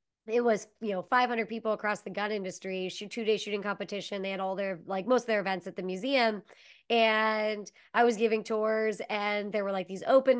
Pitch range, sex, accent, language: 200-240 Hz, male, American, English